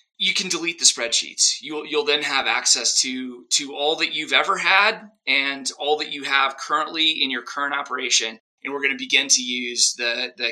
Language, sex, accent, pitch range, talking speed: English, male, American, 130-155 Hz, 205 wpm